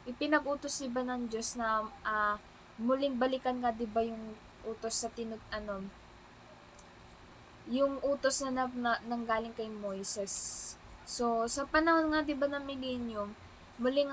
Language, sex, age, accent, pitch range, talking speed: Filipino, female, 20-39, native, 210-255 Hz, 145 wpm